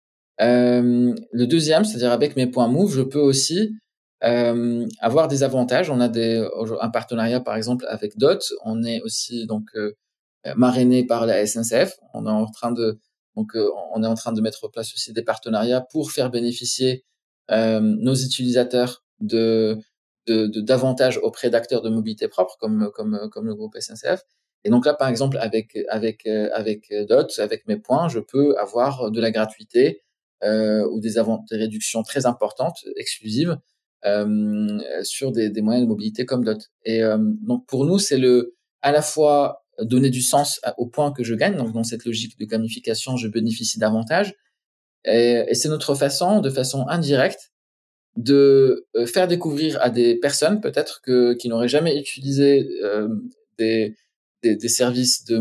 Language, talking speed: French, 175 wpm